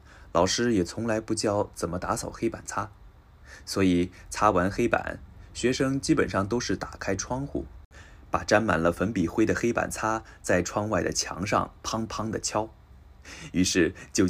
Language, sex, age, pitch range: Japanese, male, 20-39, 85-110 Hz